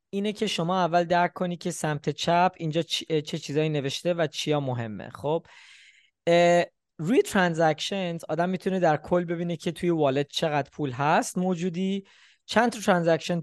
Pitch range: 150-185 Hz